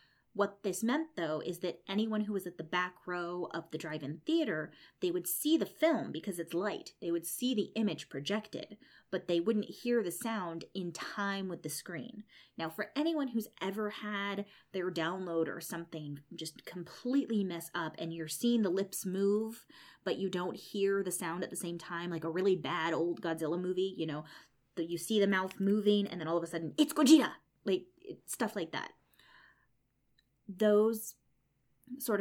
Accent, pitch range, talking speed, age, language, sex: American, 165-210 Hz, 185 wpm, 20-39, English, female